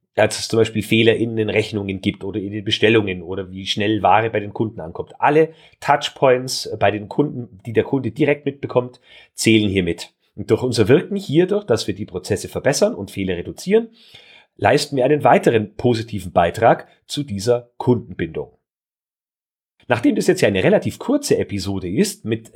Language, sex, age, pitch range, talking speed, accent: German, male, 40-59, 105-155 Hz, 175 wpm, German